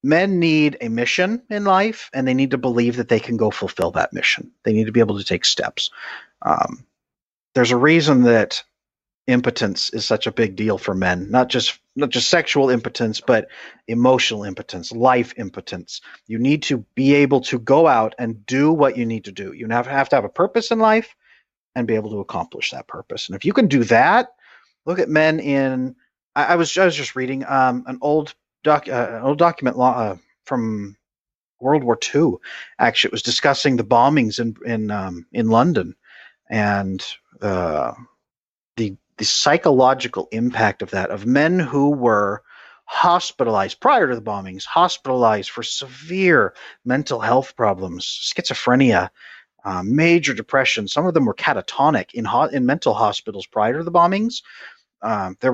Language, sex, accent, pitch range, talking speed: English, male, American, 115-150 Hz, 180 wpm